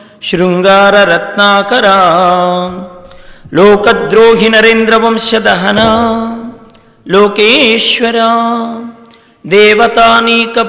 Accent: Indian